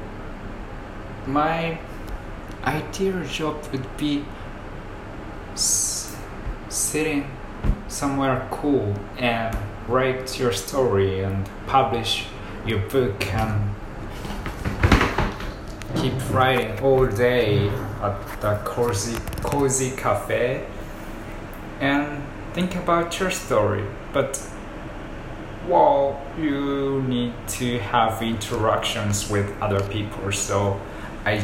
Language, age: Japanese, 20-39